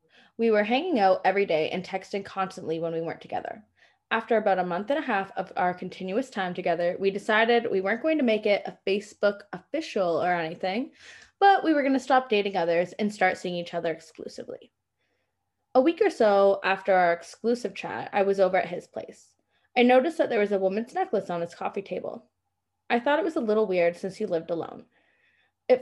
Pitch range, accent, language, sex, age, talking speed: 185-255 Hz, American, English, female, 20-39, 210 wpm